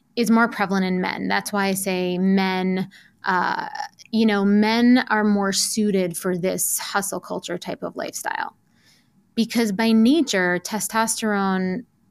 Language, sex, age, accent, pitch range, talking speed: English, female, 20-39, American, 190-225 Hz, 140 wpm